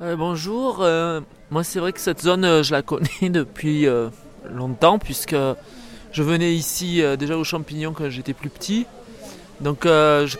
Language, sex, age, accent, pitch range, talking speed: French, male, 30-49, French, 150-190 Hz, 180 wpm